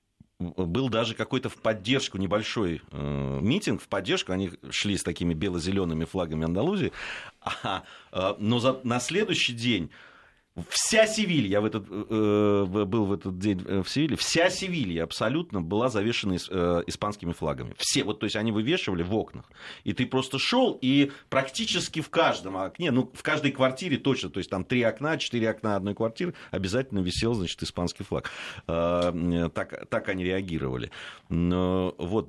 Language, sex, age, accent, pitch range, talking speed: Russian, male, 30-49, native, 85-125 Hz, 150 wpm